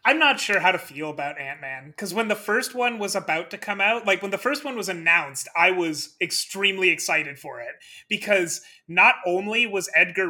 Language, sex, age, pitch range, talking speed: English, male, 30-49, 165-205 Hz, 215 wpm